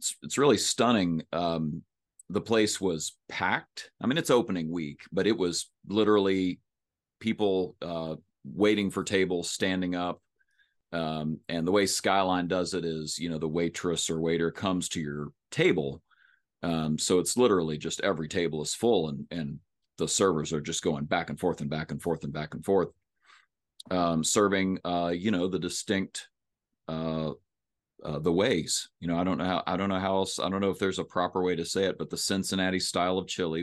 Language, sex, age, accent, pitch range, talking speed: English, male, 40-59, American, 80-95 Hz, 195 wpm